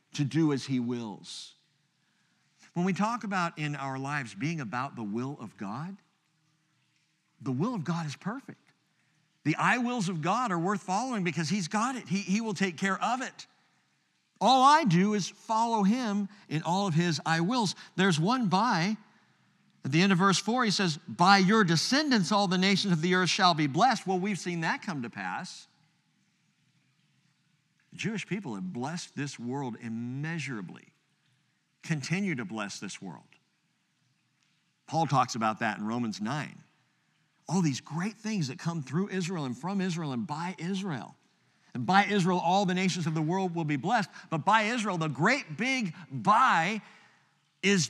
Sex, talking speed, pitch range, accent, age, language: male, 175 wpm, 150-200 Hz, American, 50-69, English